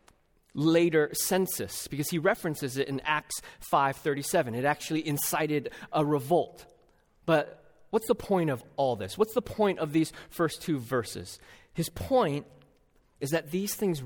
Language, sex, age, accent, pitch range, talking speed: English, male, 30-49, American, 155-240 Hz, 150 wpm